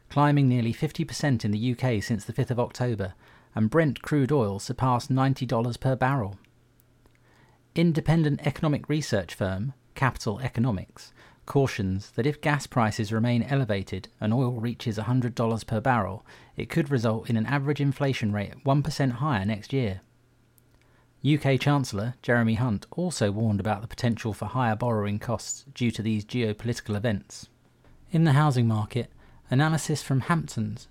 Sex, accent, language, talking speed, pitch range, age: male, British, English, 145 wpm, 115-140 Hz, 40-59